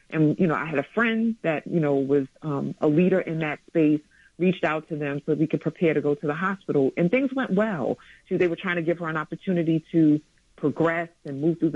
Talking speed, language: 240 wpm, English